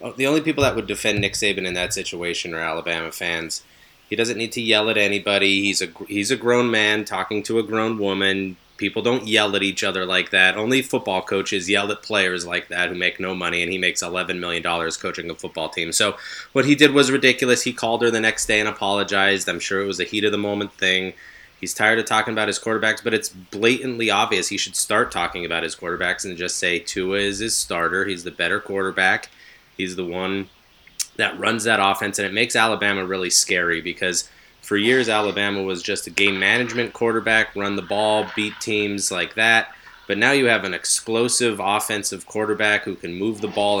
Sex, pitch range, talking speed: male, 95-110 Hz, 210 wpm